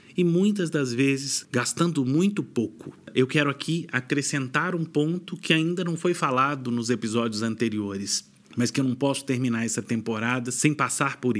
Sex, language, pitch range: male, Portuguese, 120-170 Hz